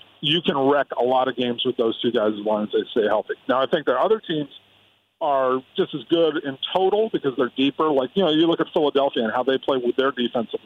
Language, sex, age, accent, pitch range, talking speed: English, male, 50-69, American, 120-150 Hz, 260 wpm